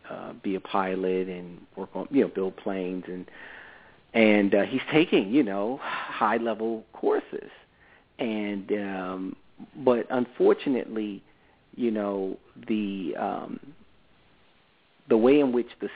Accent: American